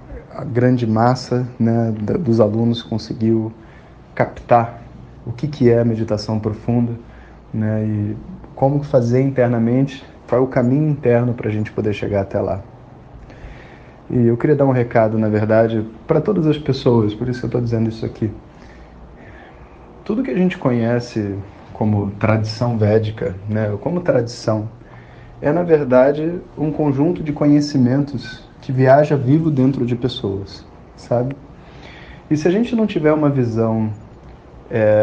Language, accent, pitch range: Portuguese, Brazilian, 110-135 Hz